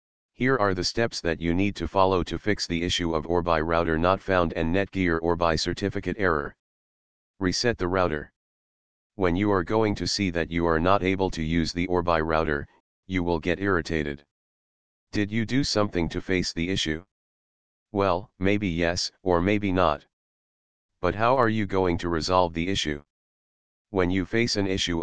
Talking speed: 175 wpm